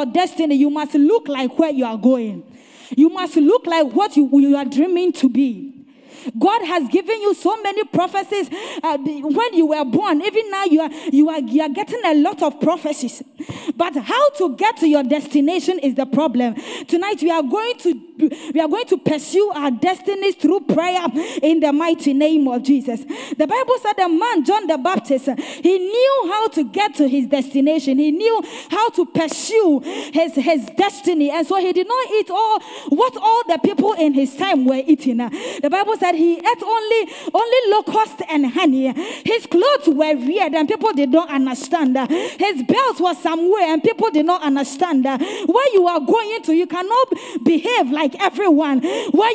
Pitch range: 295-400 Hz